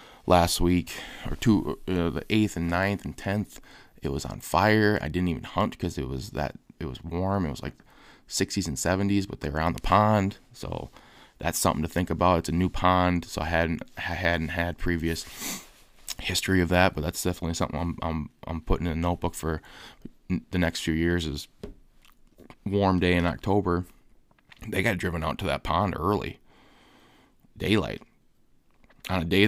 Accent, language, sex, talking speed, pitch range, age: American, English, male, 185 wpm, 80-95 Hz, 20-39